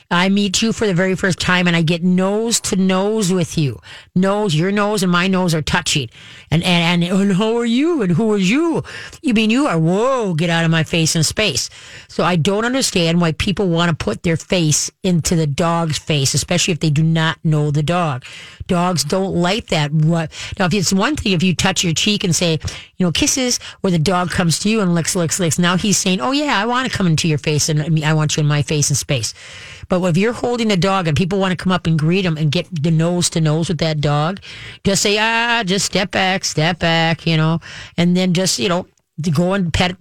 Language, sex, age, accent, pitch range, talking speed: English, female, 40-59, American, 155-195 Hz, 245 wpm